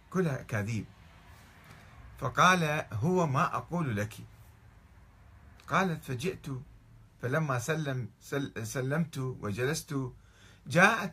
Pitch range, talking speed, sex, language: 100-155 Hz, 80 wpm, male, Arabic